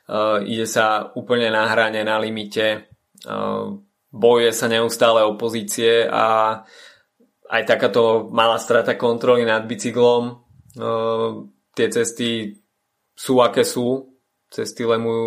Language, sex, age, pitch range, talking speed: Slovak, male, 20-39, 110-115 Hz, 115 wpm